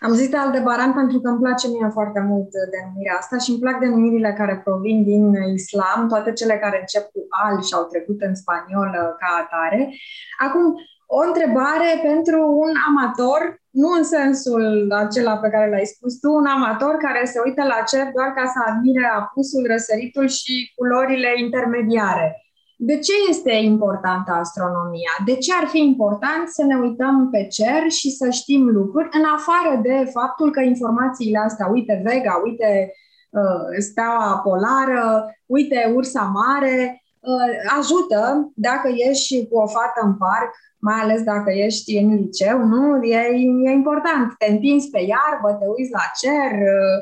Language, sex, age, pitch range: Romanian, female, 20-39, 210-275 Hz